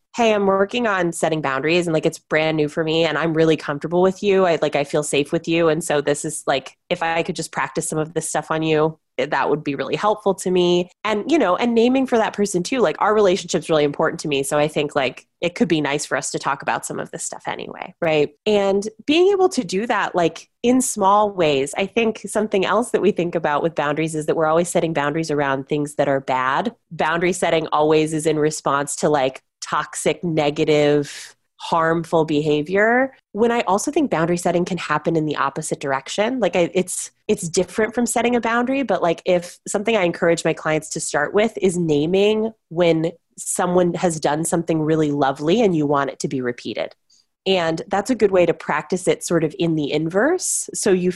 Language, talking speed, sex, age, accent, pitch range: English, 225 wpm, female, 20-39, American, 150-190 Hz